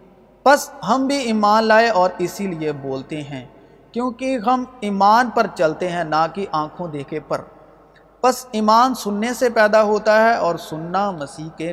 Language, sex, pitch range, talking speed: Urdu, male, 160-215 Hz, 165 wpm